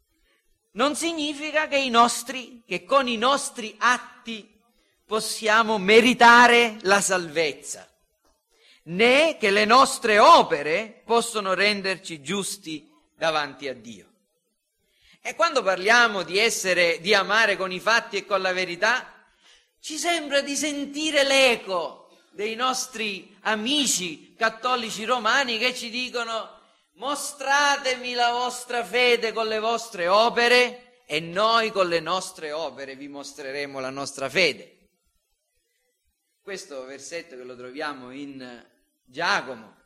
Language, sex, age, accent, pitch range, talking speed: Italian, male, 40-59, native, 155-245 Hz, 115 wpm